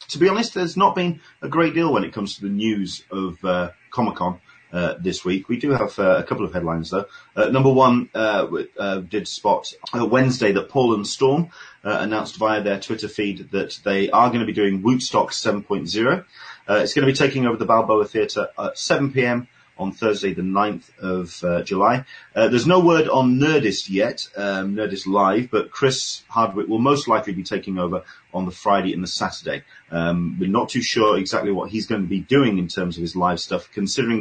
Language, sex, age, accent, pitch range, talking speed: English, male, 30-49, British, 95-130 Hz, 210 wpm